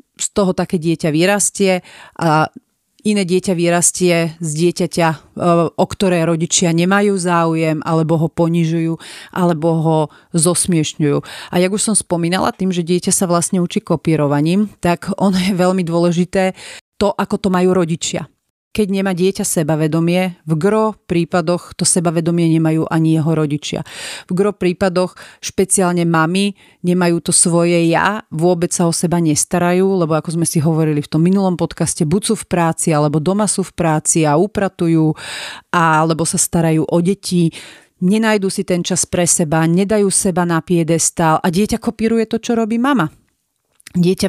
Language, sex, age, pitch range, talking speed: Slovak, female, 40-59, 165-195 Hz, 155 wpm